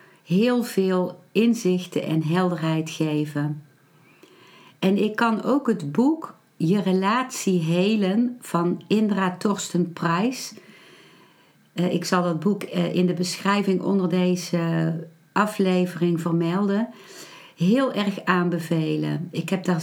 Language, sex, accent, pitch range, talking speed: Dutch, female, Dutch, 170-200 Hz, 110 wpm